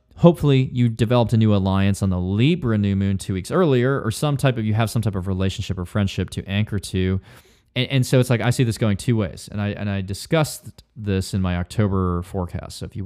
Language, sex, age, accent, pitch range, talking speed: English, male, 20-39, American, 100-130 Hz, 245 wpm